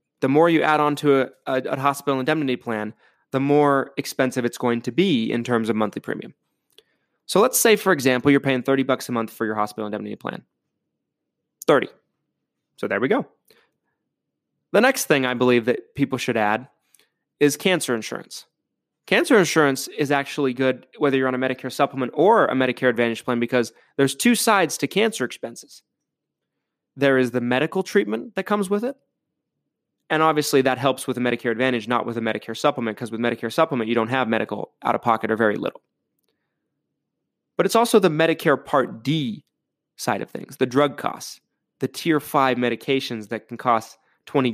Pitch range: 120-145 Hz